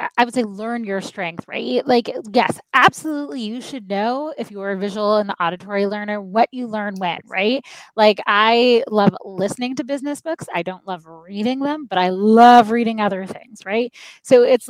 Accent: American